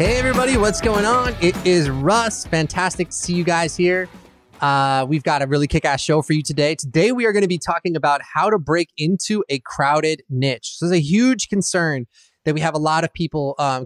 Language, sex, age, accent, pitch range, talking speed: English, male, 20-39, American, 145-185 Hz, 220 wpm